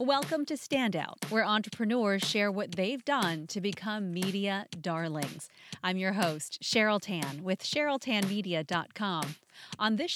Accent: American